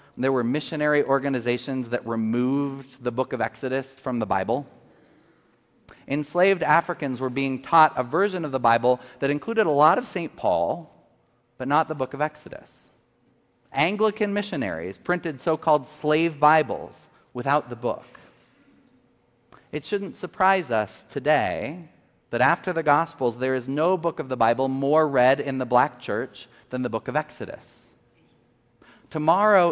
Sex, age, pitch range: male, 40-59, 125-170 Hz